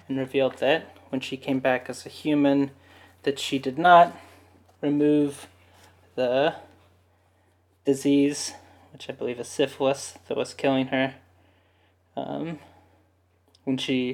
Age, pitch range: 20-39, 95-140 Hz